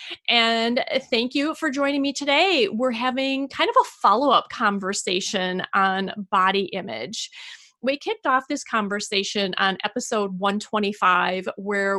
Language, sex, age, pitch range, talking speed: English, female, 30-49, 200-255 Hz, 130 wpm